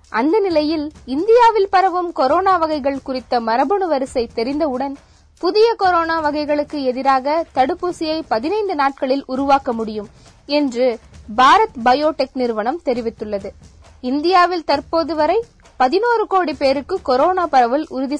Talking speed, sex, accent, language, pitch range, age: 110 wpm, female, native, Tamil, 255-355 Hz, 20-39